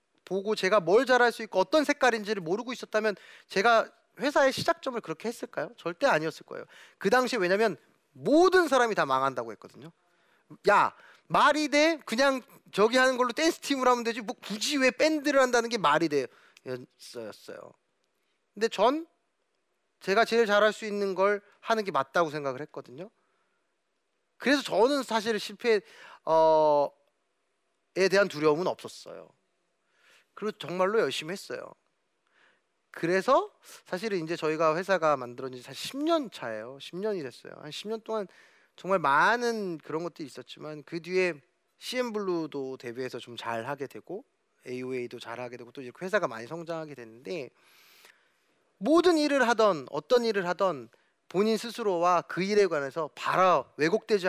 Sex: male